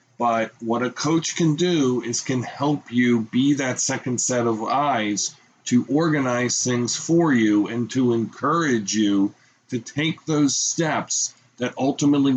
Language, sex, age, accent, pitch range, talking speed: English, male, 40-59, American, 115-140 Hz, 150 wpm